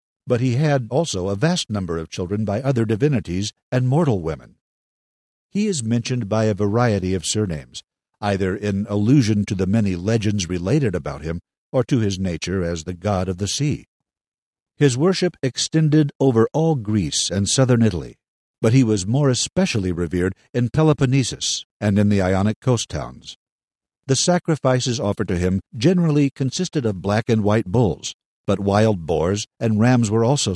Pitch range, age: 95-135 Hz, 50-69